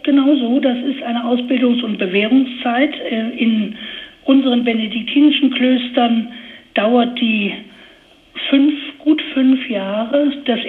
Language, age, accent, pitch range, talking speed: German, 60-79, German, 210-260 Hz, 105 wpm